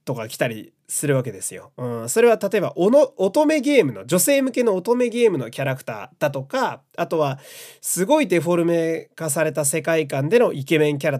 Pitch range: 140-210 Hz